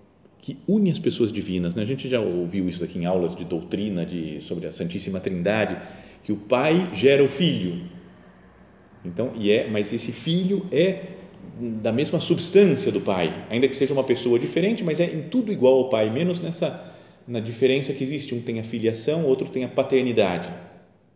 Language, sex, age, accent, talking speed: Portuguese, male, 40-59, Brazilian, 190 wpm